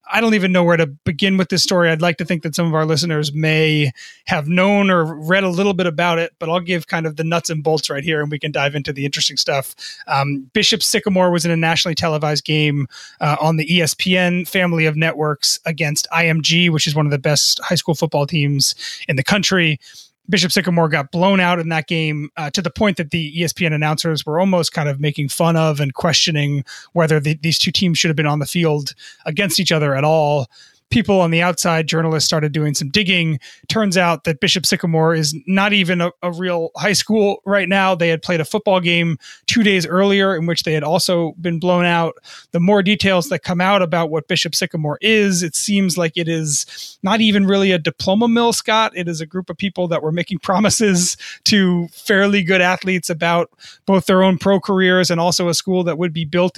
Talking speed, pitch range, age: 225 wpm, 160-185 Hz, 30-49